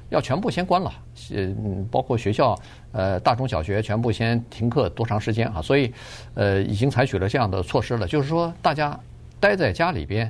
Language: Chinese